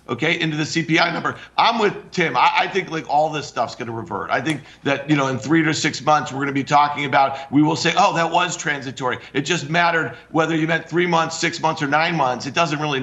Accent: American